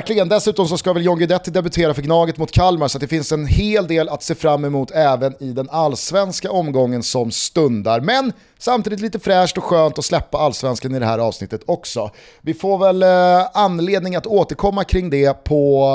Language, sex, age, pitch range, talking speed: Swedish, male, 30-49, 130-170 Hz, 190 wpm